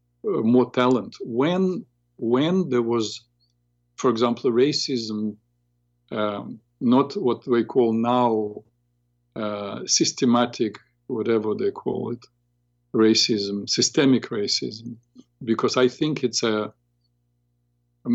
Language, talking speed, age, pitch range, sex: English, 100 wpm, 50-69, 110-125 Hz, male